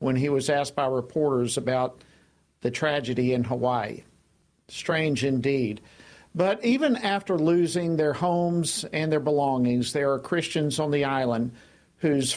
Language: English